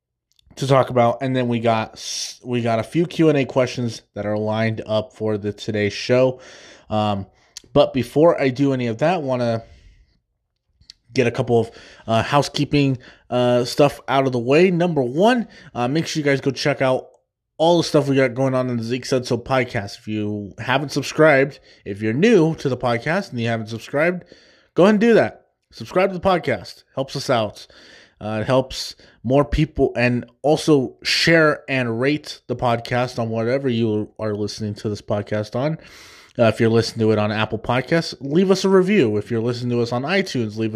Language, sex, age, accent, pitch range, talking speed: English, male, 20-39, American, 110-145 Hz, 195 wpm